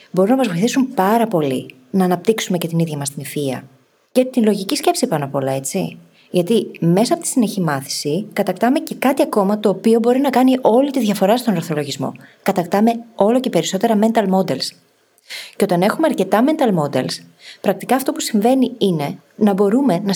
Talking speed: 180 wpm